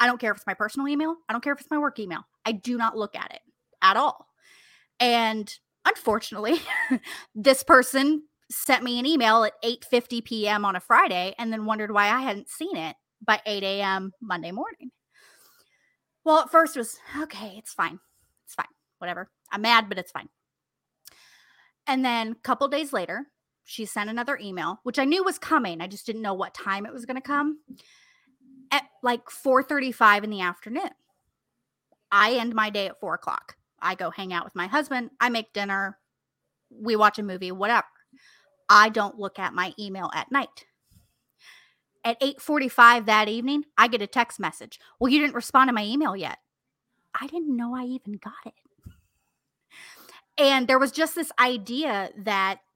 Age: 30-49